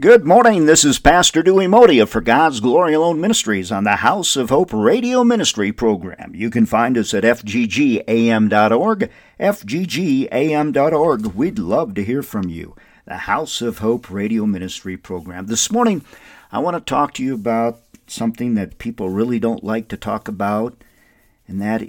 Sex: male